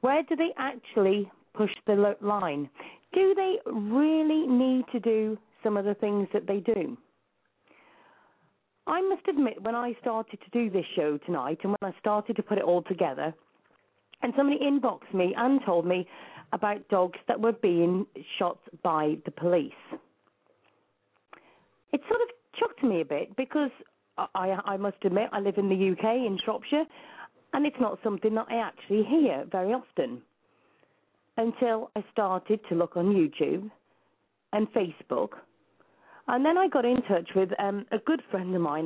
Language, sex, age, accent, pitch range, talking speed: English, female, 40-59, British, 180-250 Hz, 165 wpm